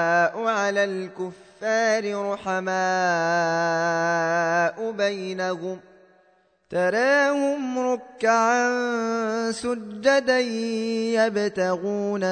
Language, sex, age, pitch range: Arabic, male, 20-39, 185-225 Hz